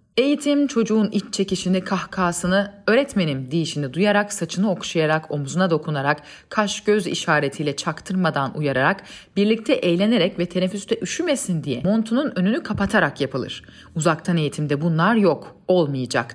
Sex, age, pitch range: female, 30-49, 155-215 Hz